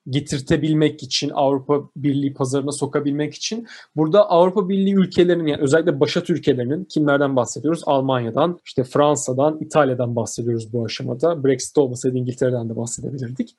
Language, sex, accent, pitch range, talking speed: Turkish, male, native, 135-170 Hz, 130 wpm